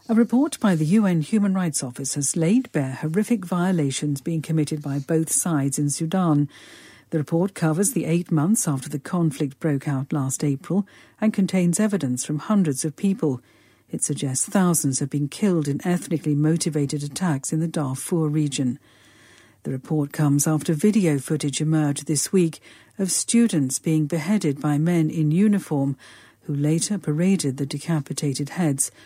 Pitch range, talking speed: 145-180 Hz, 160 wpm